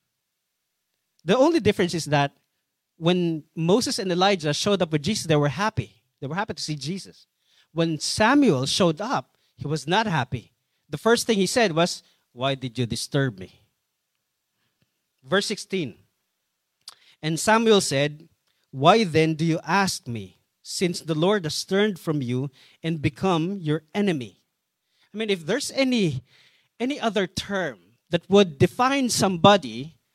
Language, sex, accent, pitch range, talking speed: English, male, Filipino, 145-205 Hz, 150 wpm